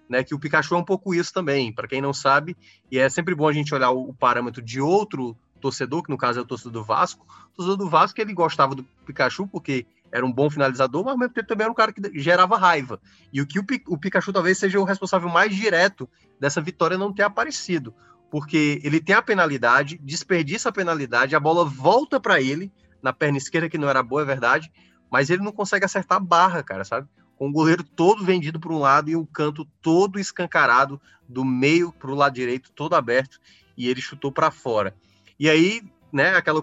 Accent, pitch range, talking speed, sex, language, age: Brazilian, 135-175 Hz, 225 wpm, male, Portuguese, 20-39